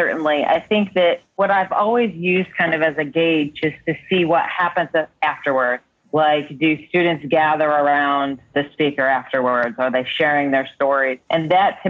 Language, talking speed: English, 175 wpm